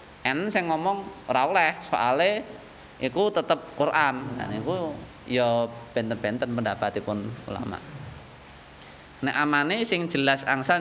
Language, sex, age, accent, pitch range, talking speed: Indonesian, male, 20-39, native, 120-140 Hz, 105 wpm